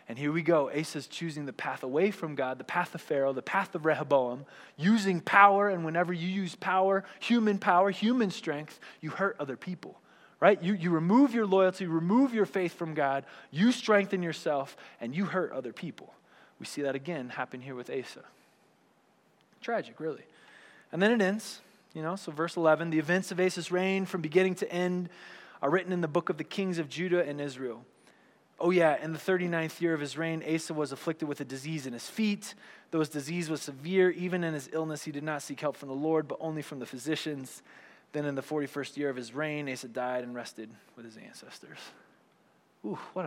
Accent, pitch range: American, 145-185 Hz